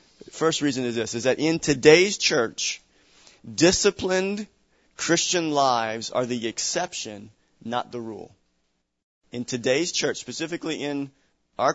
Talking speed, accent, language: 125 wpm, American, English